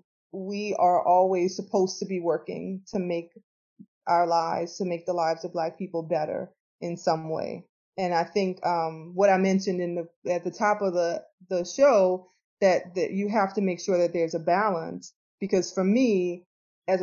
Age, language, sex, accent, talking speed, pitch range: 20-39, English, female, American, 185 wpm, 175-200 Hz